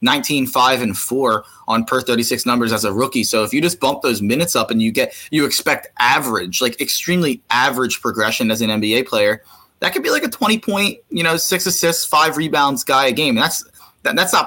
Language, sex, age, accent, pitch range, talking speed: English, male, 20-39, American, 120-165 Hz, 225 wpm